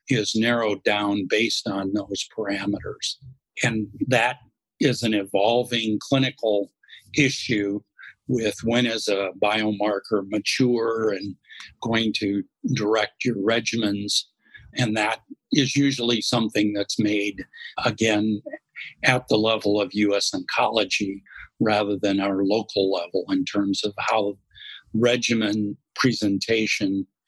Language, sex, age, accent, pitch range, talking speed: English, male, 60-79, American, 105-120 Hz, 110 wpm